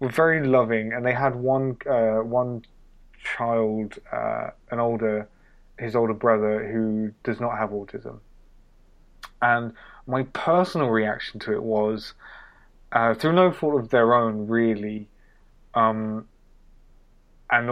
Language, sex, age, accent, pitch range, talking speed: English, male, 20-39, British, 110-130 Hz, 130 wpm